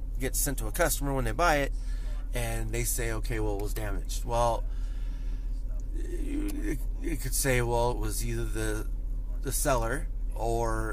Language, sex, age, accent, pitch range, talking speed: English, male, 30-49, American, 100-125 Hz, 165 wpm